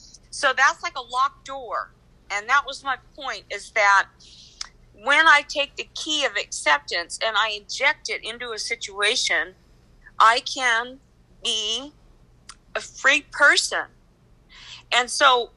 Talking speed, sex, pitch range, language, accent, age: 135 wpm, female, 225-275 Hz, English, American, 50-69